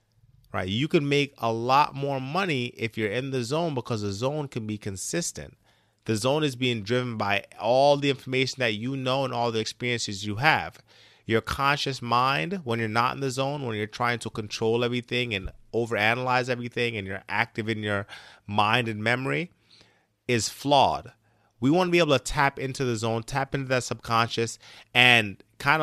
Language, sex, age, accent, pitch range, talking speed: English, male, 30-49, American, 105-130 Hz, 190 wpm